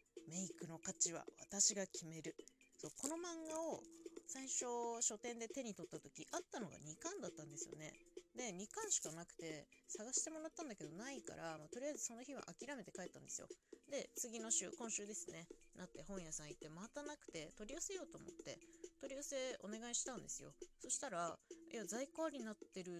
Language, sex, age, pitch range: Japanese, female, 20-39, 175-265 Hz